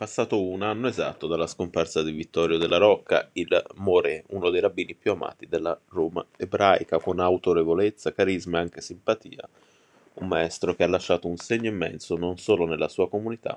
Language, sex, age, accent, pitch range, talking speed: Italian, male, 20-39, native, 85-110 Hz, 170 wpm